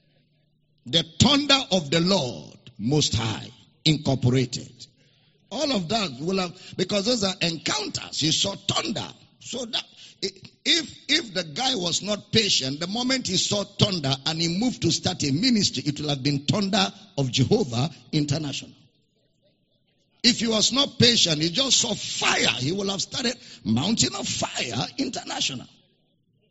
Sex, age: male, 50-69